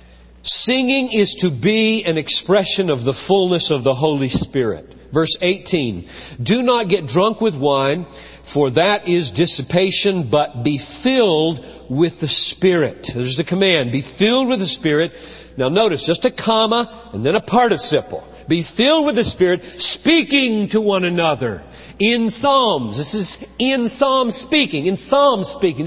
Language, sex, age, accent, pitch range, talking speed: English, male, 50-69, American, 140-210 Hz, 155 wpm